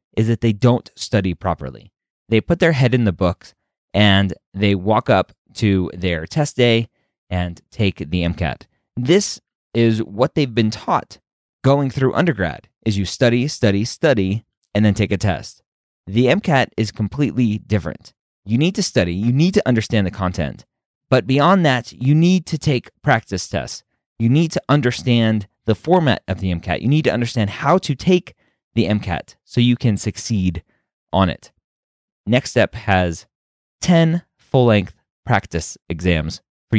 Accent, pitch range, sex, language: American, 90-130 Hz, male, English